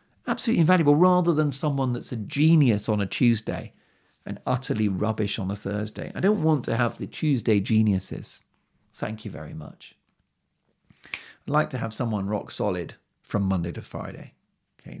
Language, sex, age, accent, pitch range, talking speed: English, male, 40-59, British, 100-125 Hz, 165 wpm